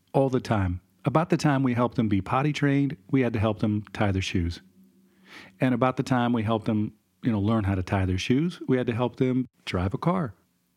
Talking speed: 240 wpm